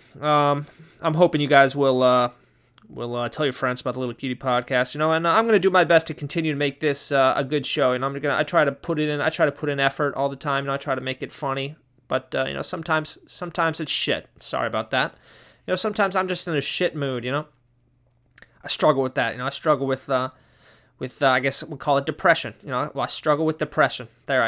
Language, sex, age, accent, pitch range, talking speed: English, male, 20-39, American, 125-160 Hz, 275 wpm